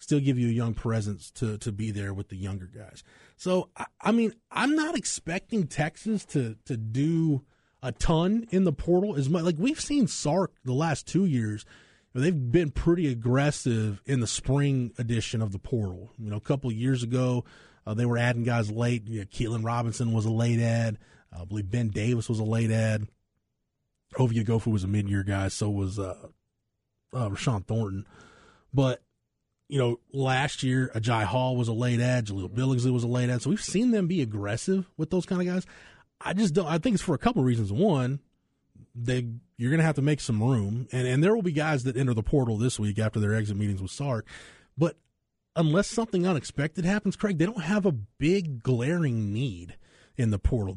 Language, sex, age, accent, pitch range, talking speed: English, male, 20-39, American, 110-165 Hz, 210 wpm